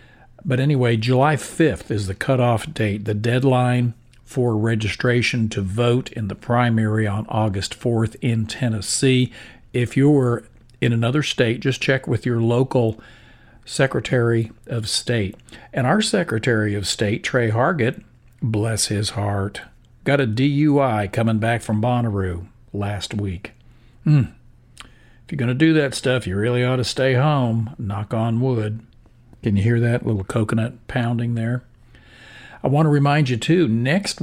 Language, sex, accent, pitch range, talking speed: English, male, American, 110-130 Hz, 150 wpm